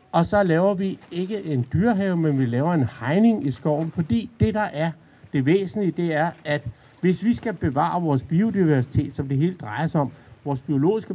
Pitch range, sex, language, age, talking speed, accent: 135-175 Hz, male, Danish, 60-79, 200 wpm, native